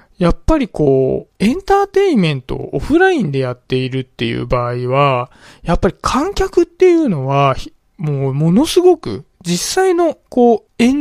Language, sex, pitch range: Japanese, male, 130-200 Hz